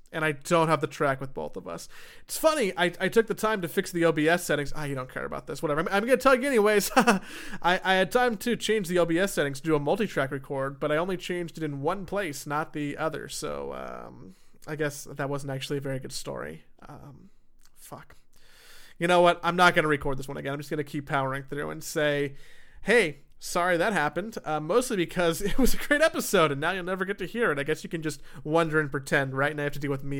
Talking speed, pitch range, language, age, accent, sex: 255 wpm, 145-195 Hz, English, 30-49, American, male